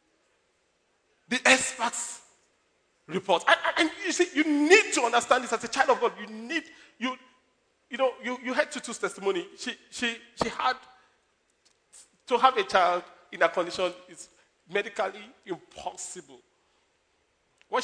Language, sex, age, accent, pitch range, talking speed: English, male, 40-59, Nigerian, 215-330 Hz, 140 wpm